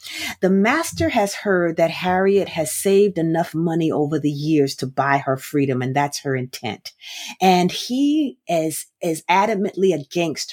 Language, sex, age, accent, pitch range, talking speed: English, female, 40-59, American, 150-220 Hz, 155 wpm